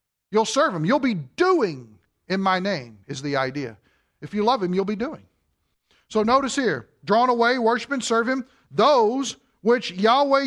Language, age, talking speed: English, 40-59, 180 wpm